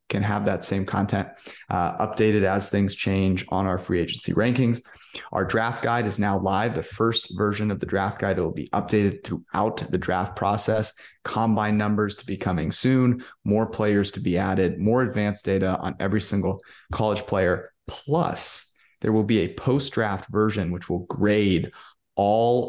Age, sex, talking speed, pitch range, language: 20-39, male, 170 wpm, 95-110 Hz, English